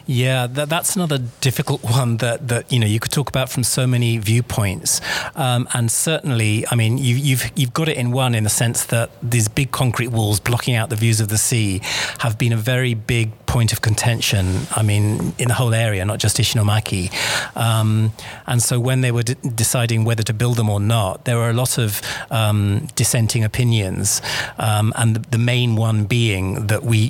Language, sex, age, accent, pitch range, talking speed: English, male, 40-59, British, 110-130 Hz, 205 wpm